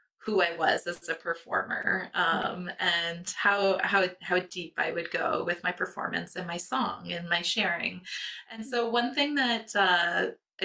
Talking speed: 170 wpm